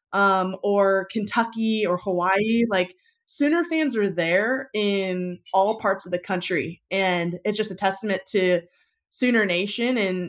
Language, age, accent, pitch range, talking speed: English, 20-39, American, 180-220 Hz, 145 wpm